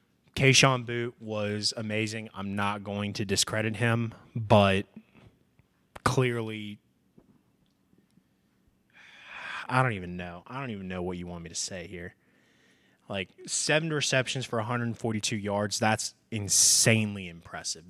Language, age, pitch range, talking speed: English, 20-39, 105-120 Hz, 120 wpm